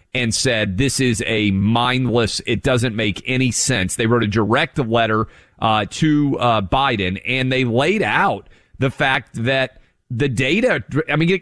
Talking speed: 165 wpm